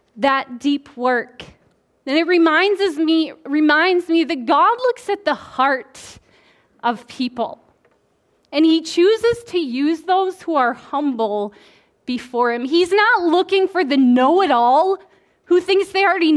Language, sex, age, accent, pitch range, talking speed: English, female, 20-39, American, 250-350 Hz, 145 wpm